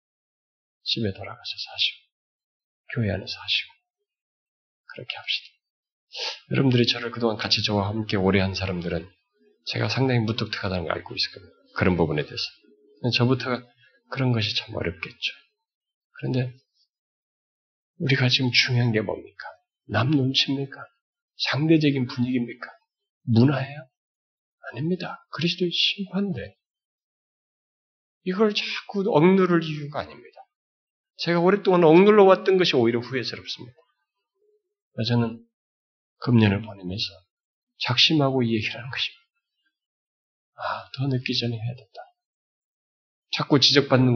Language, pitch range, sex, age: Korean, 110-170 Hz, male, 40-59